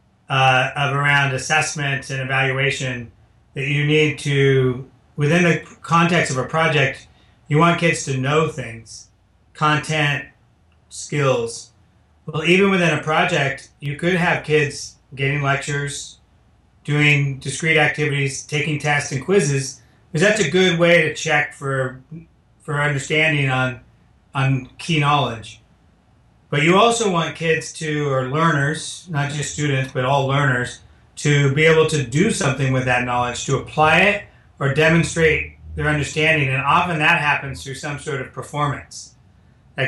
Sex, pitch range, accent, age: male, 130-155 Hz, American, 40-59